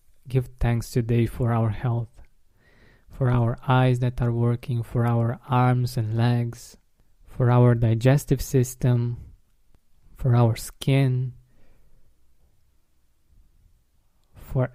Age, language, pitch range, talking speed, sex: 20-39, English, 115-130 Hz, 100 wpm, male